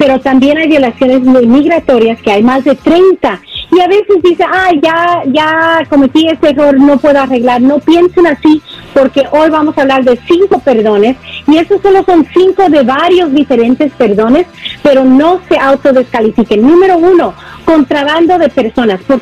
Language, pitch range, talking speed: Spanish, 255-330 Hz, 170 wpm